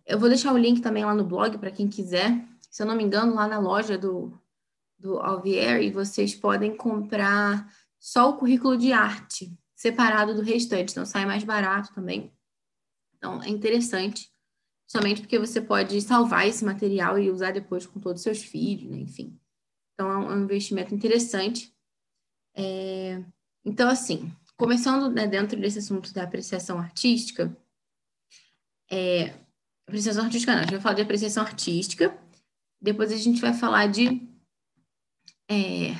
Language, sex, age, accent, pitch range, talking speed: Portuguese, female, 10-29, Brazilian, 195-230 Hz, 150 wpm